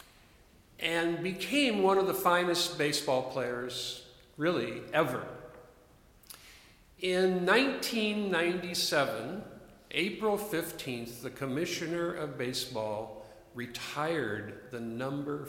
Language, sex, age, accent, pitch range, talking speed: English, male, 50-69, American, 125-185 Hz, 80 wpm